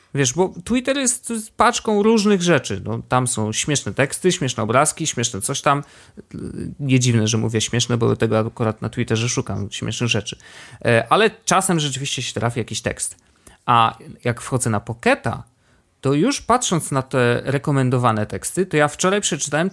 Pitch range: 115-160 Hz